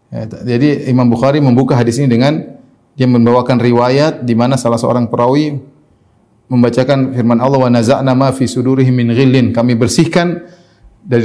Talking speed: 155 wpm